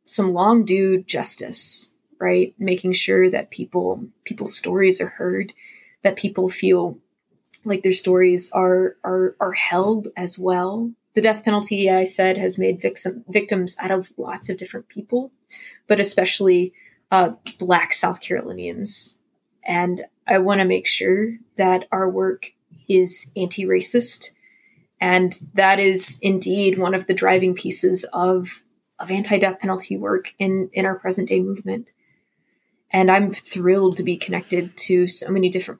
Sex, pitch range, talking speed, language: female, 185-210 Hz, 145 wpm, English